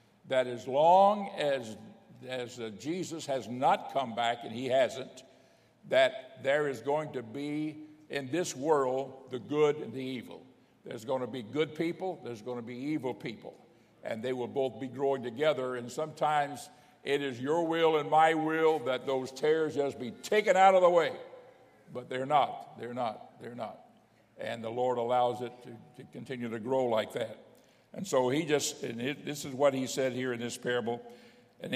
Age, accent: 60-79, American